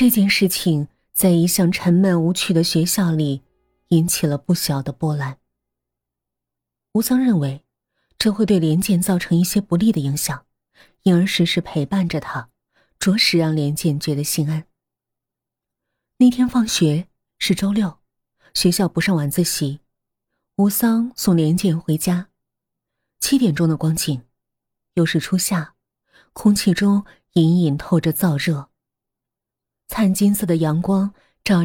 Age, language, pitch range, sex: 30-49, Chinese, 150-205 Hz, female